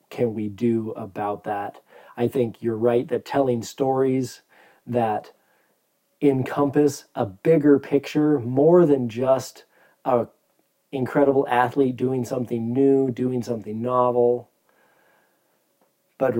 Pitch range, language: 115-130 Hz, English